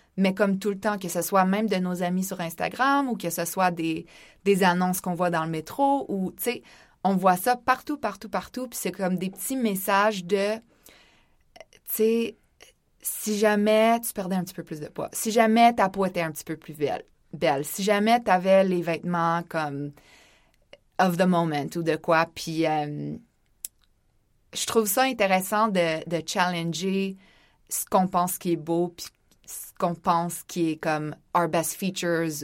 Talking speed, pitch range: 195 wpm, 165-195 Hz